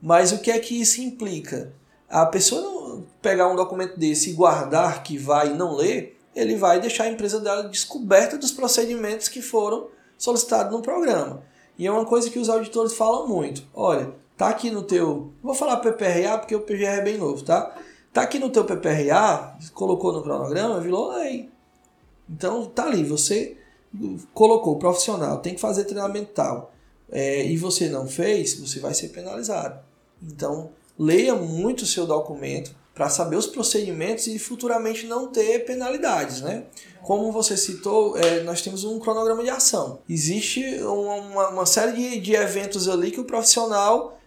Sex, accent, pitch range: male, Brazilian, 175-225 Hz